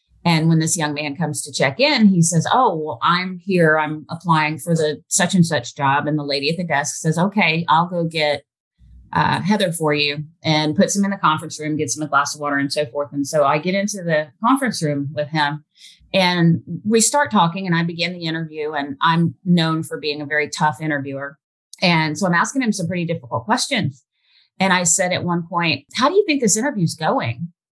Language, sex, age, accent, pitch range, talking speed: English, female, 30-49, American, 150-185 Hz, 225 wpm